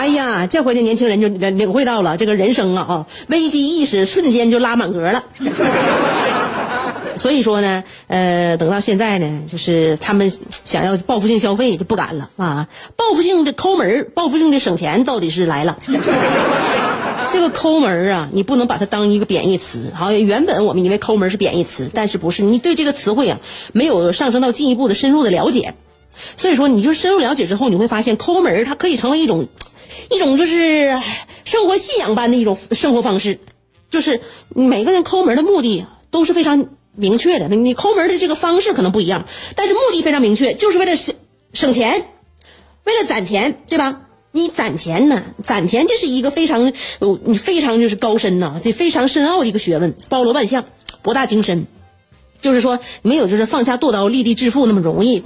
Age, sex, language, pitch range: 30-49, female, Chinese, 195-295 Hz